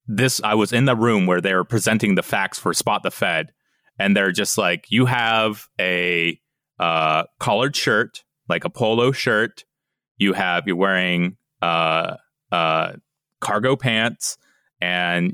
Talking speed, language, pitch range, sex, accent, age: 155 wpm, English, 95-150 Hz, male, American, 30-49